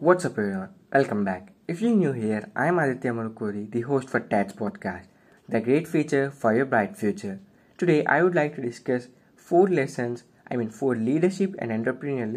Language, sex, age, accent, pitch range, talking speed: English, male, 20-39, Indian, 115-140 Hz, 185 wpm